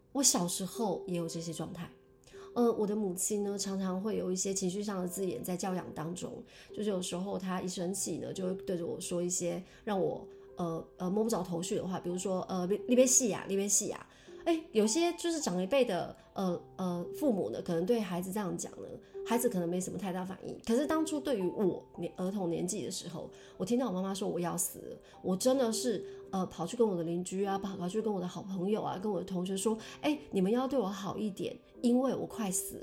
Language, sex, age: Chinese, female, 20-39